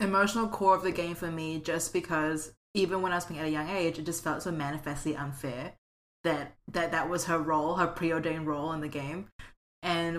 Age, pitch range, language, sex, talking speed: 20-39, 155-180 Hz, English, female, 220 wpm